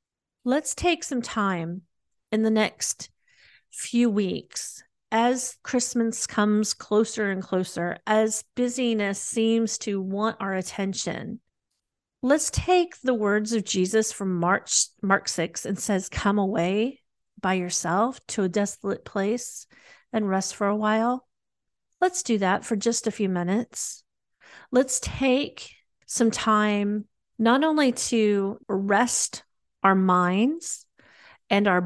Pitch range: 200-245 Hz